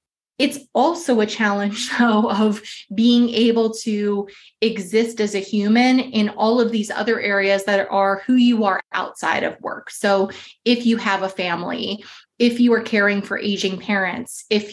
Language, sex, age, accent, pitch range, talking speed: English, female, 20-39, American, 195-230 Hz, 165 wpm